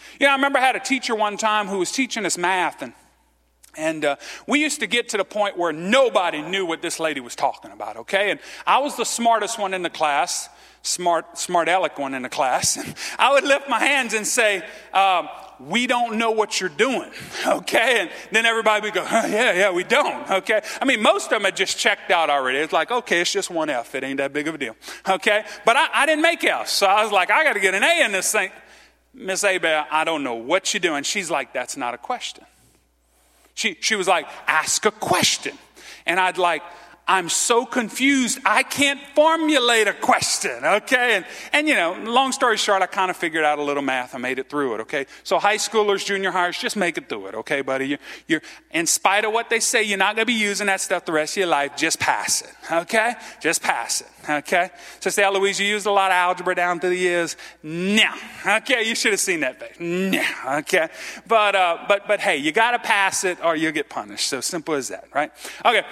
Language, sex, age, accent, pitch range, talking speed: English, male, 40-59, American, 170-230 Hz, 235 wpm